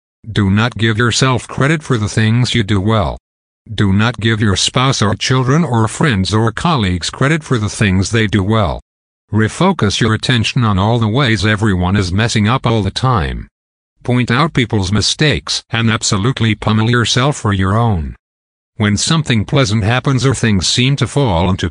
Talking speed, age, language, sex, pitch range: 175 wpm, 50-69, English, male, 95-125 Hz